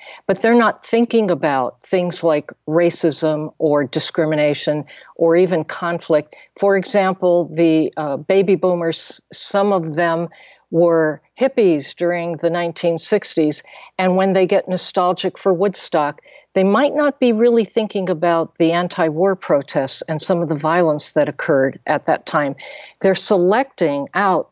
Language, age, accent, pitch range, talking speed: English, 60-79, American, 165-215 Hz, 140 wpm